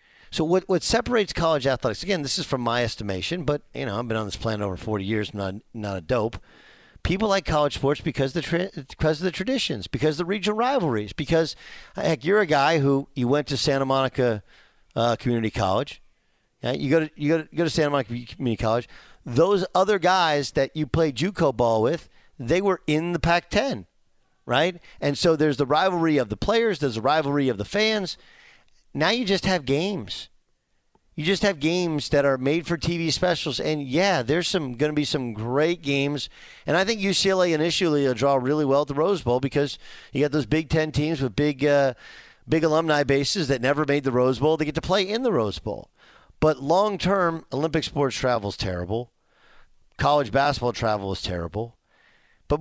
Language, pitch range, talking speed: English, 130-170 Hz, 205 wpm